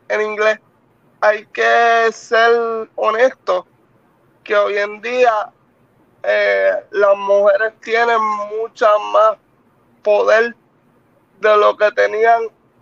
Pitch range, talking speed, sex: 200-230 Hz, 100 wpm, male